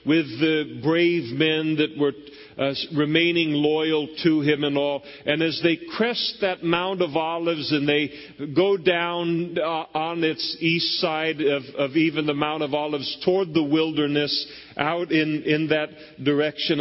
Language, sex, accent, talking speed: English, male, American, 160 wpm